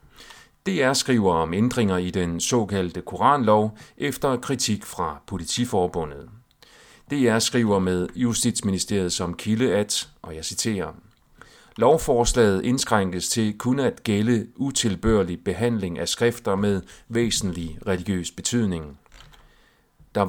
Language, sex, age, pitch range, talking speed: Danish, male, 40-59, 90-115 Hz, 110 wpm